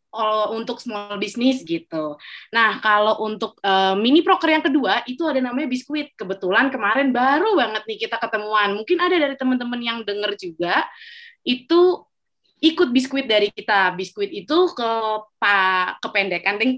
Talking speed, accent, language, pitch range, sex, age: 145 wpm, native, Indonesian, 210-295 Hz, female, 20-39